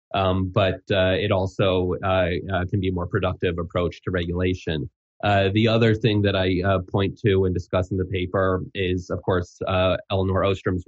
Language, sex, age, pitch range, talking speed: English, male, 20-39, 90-100 Hz, 195 wpm